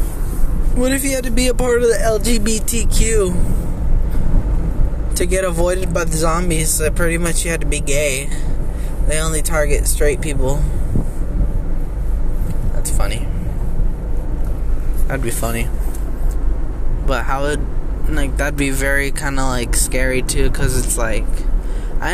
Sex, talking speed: male, 140 wpm